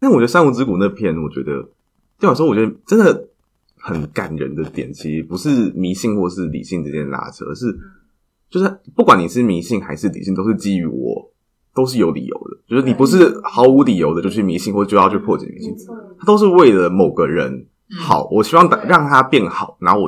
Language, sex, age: Chinese, male, 20-39